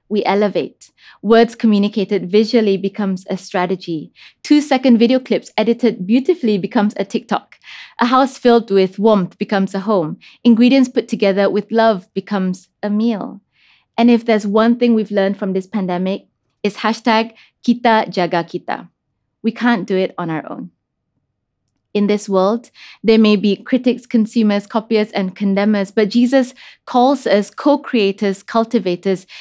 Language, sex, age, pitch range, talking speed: English, female, 20-39, 195-235 Hz, 145 wpm